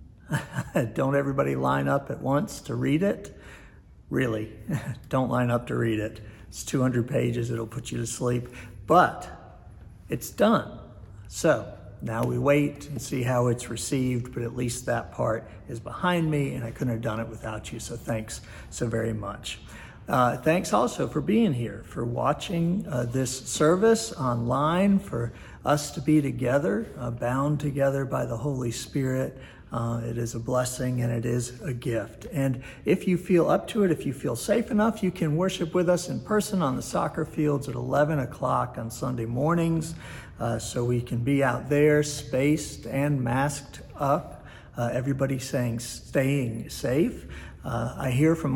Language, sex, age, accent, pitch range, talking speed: English, male, 60-79, American, 115-150 Hz, 175 wpm